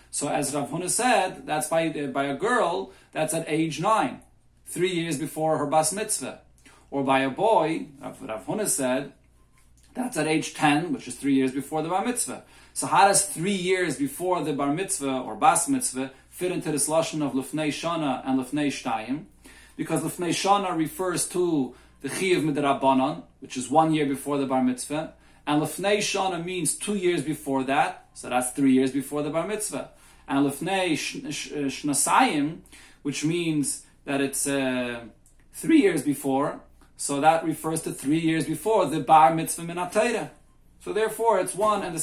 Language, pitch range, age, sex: English, 135-170 Hz, 30-49, male